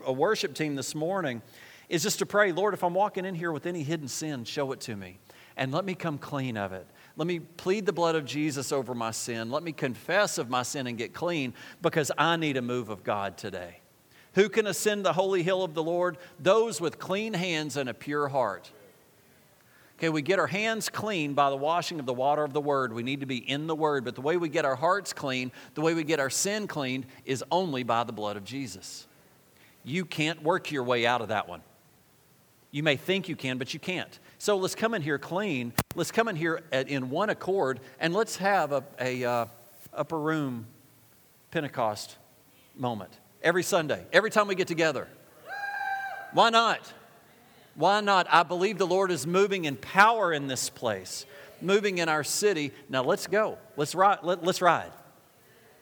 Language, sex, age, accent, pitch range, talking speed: English, male, 40-59, American, 130-185 Hz, 205 wpm